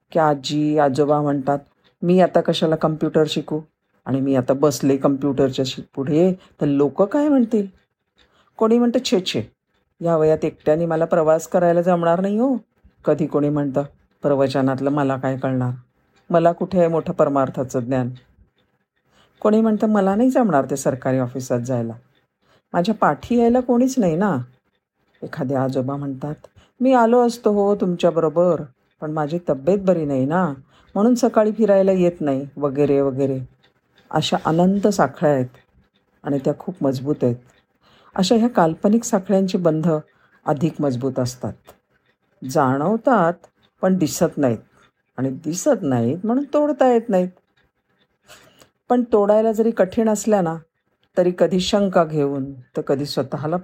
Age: 50-69